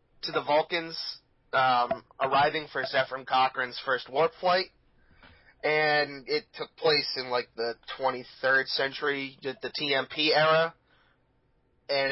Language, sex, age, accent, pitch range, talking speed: English, male, 30-49, American, 135-175 Hz, 120 wpm